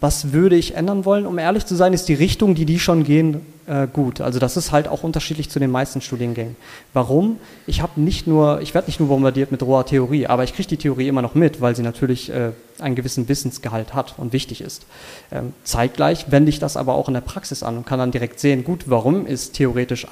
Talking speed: 240 wpm